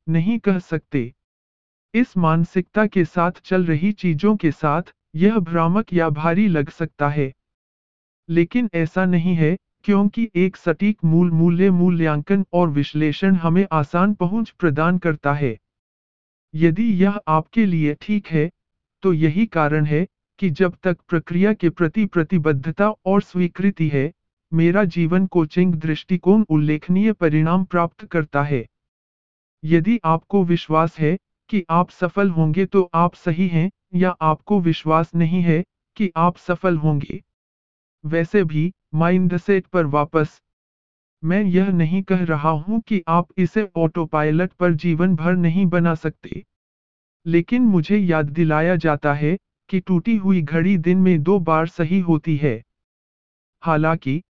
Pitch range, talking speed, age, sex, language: 155-185 Hz, 140 wpm, 50-69, male, Hindi